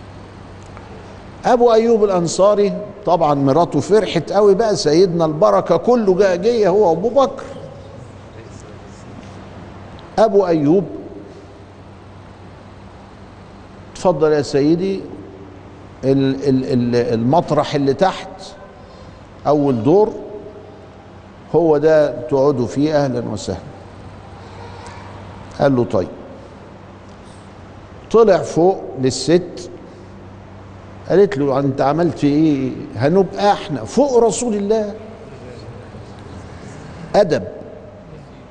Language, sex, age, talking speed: Arabic, male, 50-69, 75 wpm